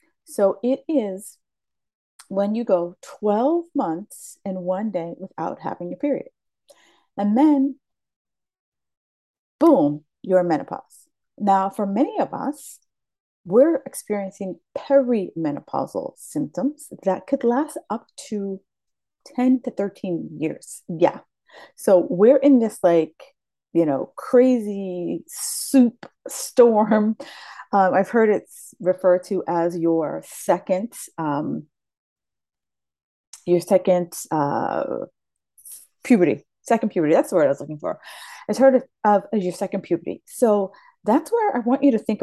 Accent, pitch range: American, 185-270 Hz